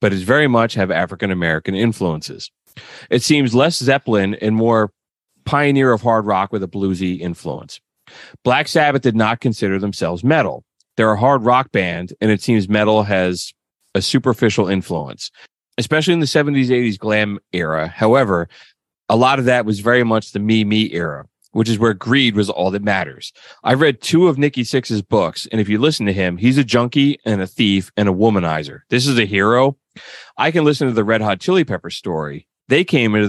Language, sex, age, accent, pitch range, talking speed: English, male, 30-49, American, 95-125 Hz, 195 wpm